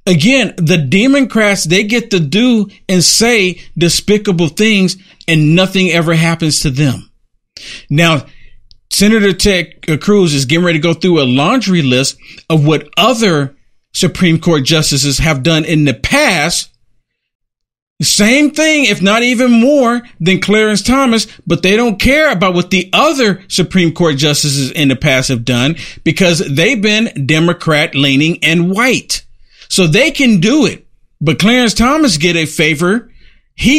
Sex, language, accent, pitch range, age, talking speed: male, English, American, 150-215 Hz, 50-69, 150 wpm